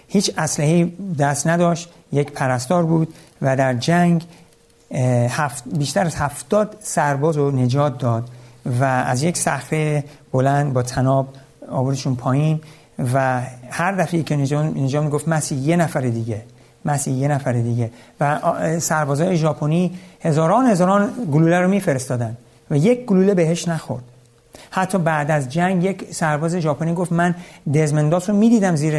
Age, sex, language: 50-69, male, Persian